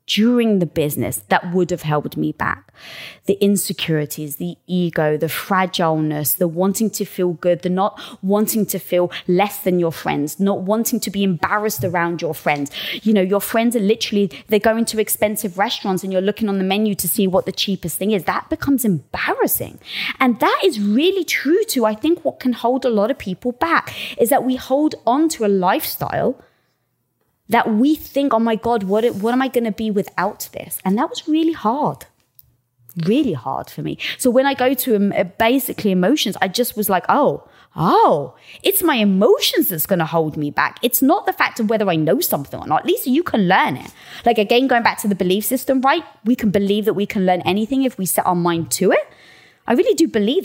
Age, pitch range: 20-39, 180-245 Hz